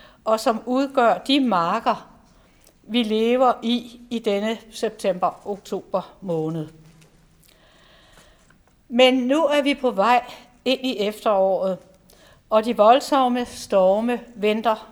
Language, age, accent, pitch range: Danish, 60-79, native, 205-250 Hz